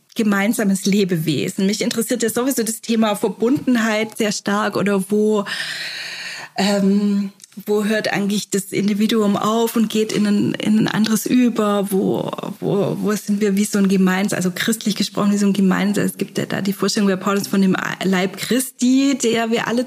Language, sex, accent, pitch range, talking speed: German, female, German, 200-230 Hz, 180 wpm